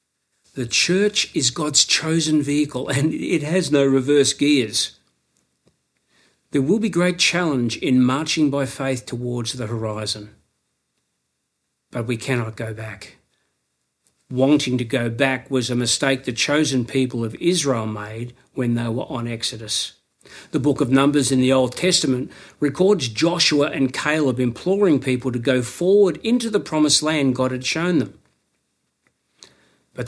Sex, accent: male, Australian